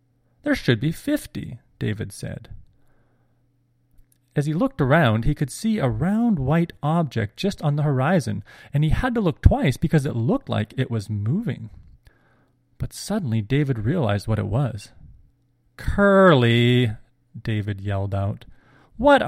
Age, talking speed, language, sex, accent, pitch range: 30-49, 145 wpm, English, male, American, 110-150 Hz